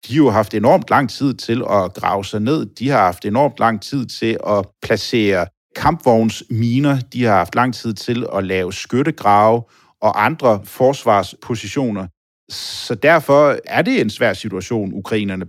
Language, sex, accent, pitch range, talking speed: Danish, male, native, 100-135 Hz, 165 wpm